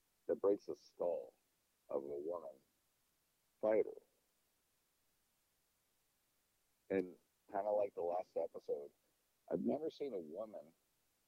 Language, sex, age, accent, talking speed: English, male, 50-69, American, 105 wpm